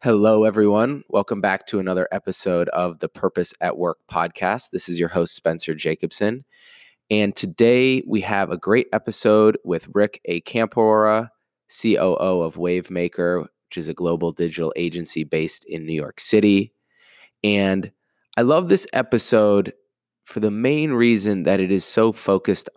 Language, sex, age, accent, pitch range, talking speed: English, male, 20-39, American, 85-105 Hz, 155 wpm